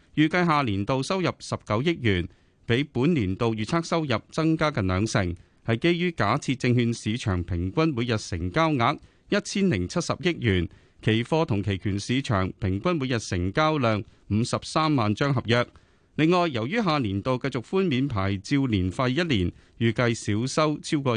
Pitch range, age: 100-155 Hz, 30-49